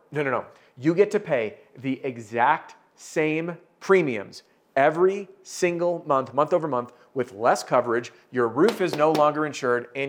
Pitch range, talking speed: 120-150 Hz, 160 wpm